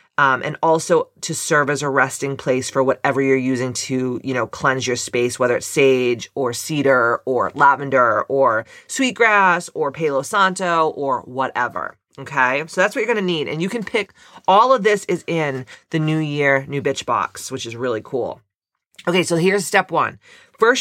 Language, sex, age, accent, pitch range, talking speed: English, female, 30-49, American, 145-190 Hz, 190 wpm